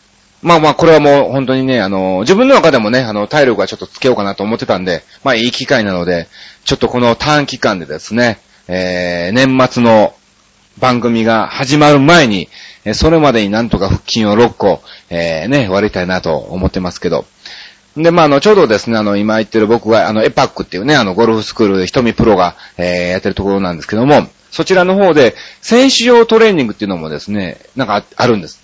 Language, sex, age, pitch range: Japanese, male, 30-49, 100-145 Hz